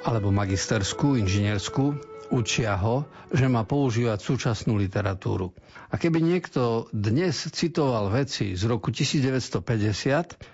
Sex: male